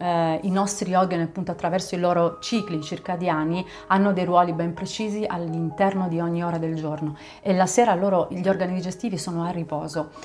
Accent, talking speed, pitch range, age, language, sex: native, 180 wpm, 170-210 Hz, 30-49, Italian, female